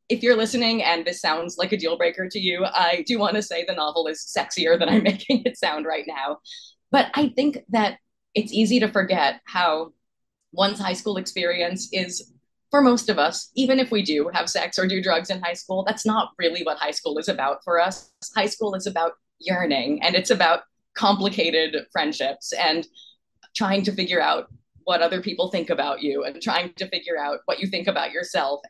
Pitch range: 170-215 Hz